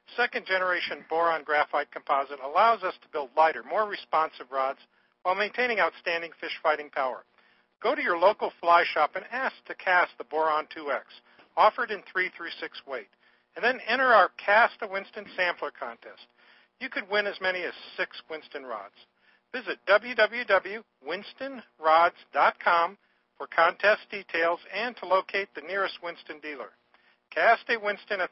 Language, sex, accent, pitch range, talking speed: English, male, American, 165-210 Hz, 145 wpm